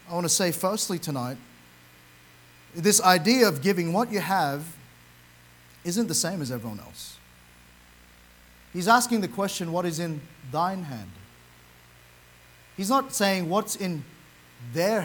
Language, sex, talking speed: English, male, 135 wpm